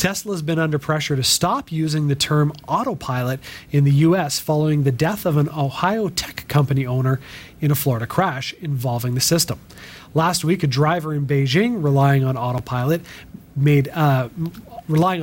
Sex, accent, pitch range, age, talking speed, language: male, American, 135-165 Hz, 30-49, 160 wpm, English